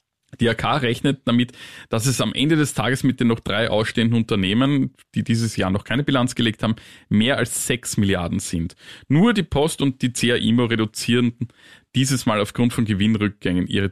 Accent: Austrian